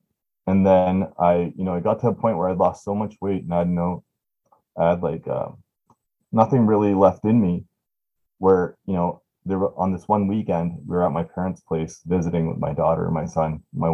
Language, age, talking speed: English, 20-39, 220 wpm